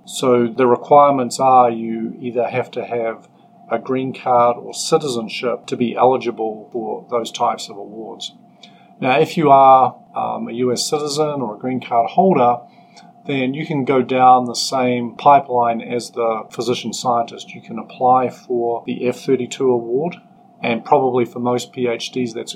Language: English